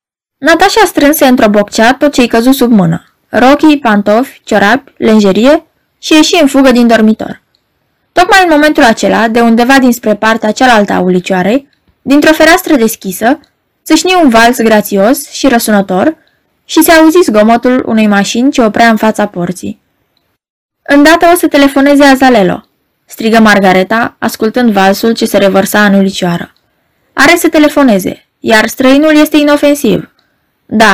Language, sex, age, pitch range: Romanian, female, 20-39, 210-290 Hz